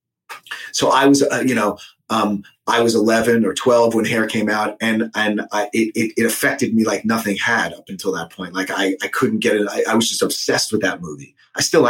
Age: 30-49